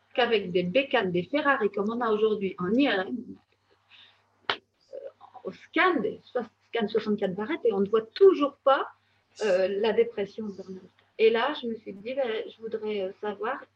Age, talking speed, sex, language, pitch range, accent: 40-59, 160 wpm, female, French, 205-245 Hz, French